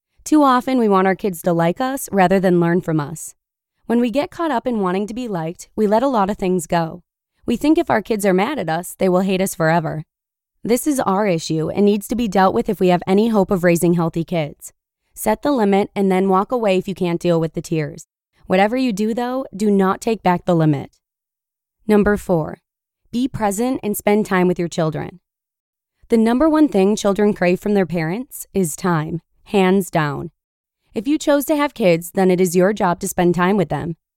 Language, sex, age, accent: English, female, 20-39, American